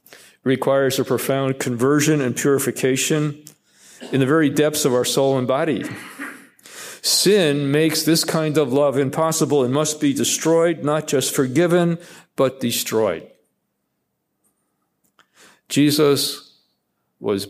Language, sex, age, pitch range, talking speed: English, male, 50-69, 125-145 Hz, 115 wpm